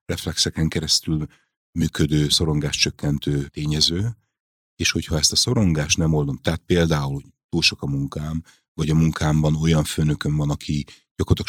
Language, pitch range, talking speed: Hungarian, 75-85 Hz, 145 wpm